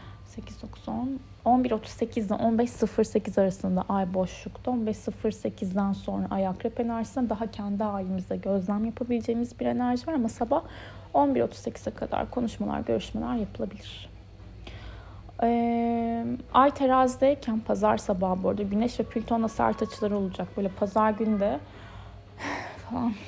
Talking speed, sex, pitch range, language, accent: 110 wpm, female, 185-235 Hz, Turkish, native